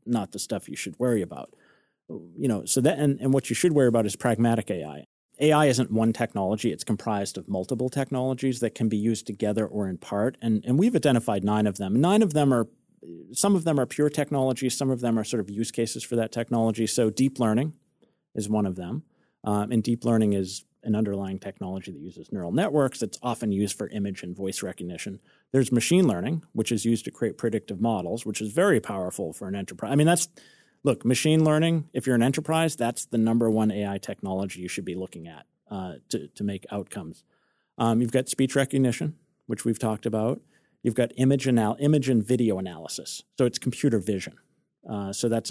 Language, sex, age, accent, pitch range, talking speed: English, male, 30-49, American, 105-130 Hz, 210 wpm